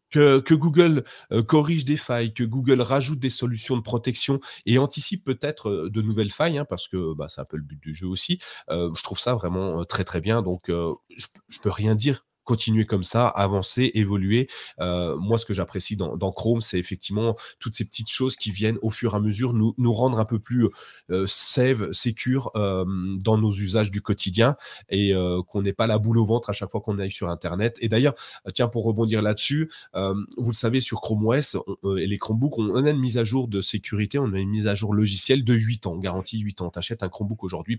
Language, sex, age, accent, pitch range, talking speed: French, male, 30-49, French, 95-125 Hz, 235 wpm